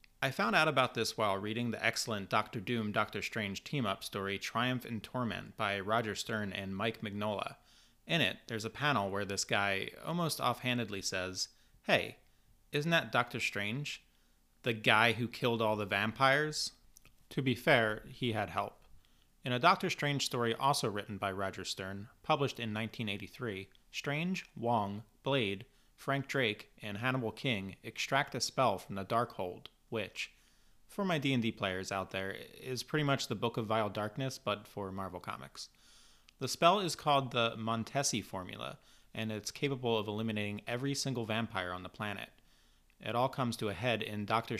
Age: 30-49